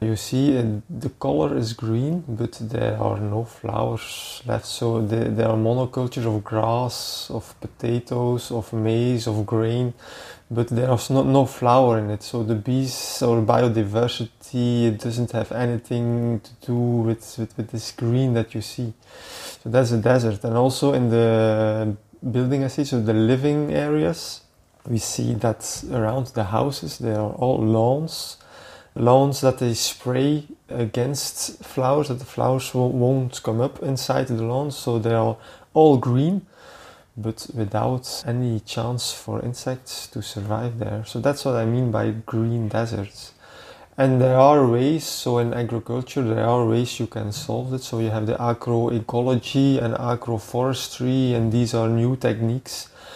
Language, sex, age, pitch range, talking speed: English, male, 20-39, 115-130 Hz, 155 wpm